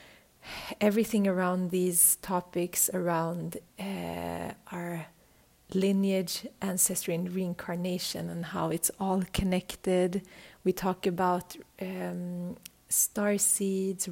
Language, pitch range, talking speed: English, 175-195 Hz, 95 wpm